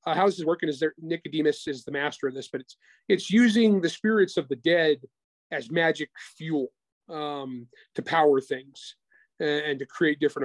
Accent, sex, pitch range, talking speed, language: American, male, 140-170 Hz, 195 wpm, English